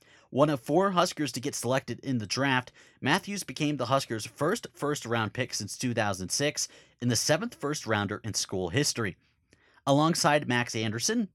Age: 30-49